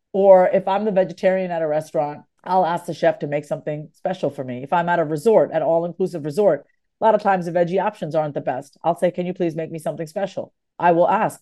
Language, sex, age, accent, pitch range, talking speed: English, female, 40-59, American, 160-215 Hz, 250 wpm